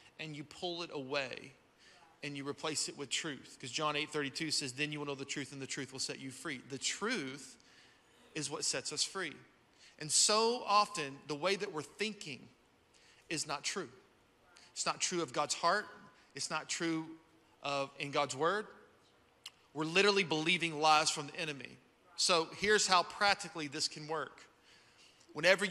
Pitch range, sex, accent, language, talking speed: 130-160 Hz, male, American, English, 175 wpm